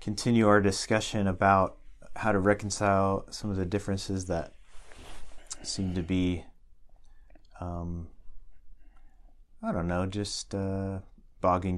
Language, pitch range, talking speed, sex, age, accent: English, 85-100 Hz, 110 wpm, male, 30-49, American